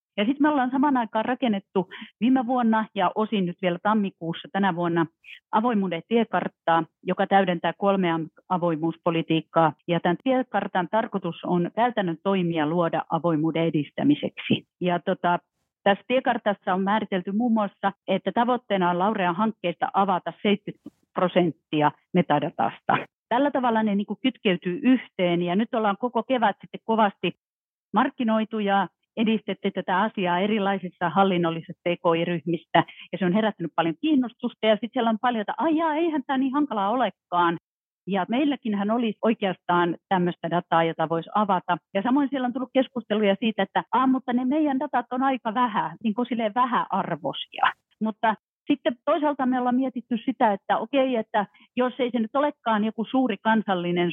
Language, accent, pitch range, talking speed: Finnish, native, 175-240 Hz, 150 wpm